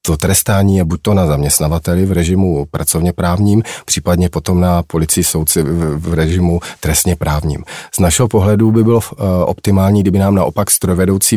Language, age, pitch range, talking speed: Czech, 40-59, 85-100 Hz, 155 wpm